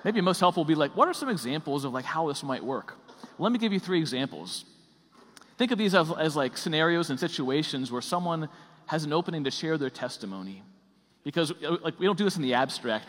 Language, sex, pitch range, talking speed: English, male, 135-175 Hz, 230 wpm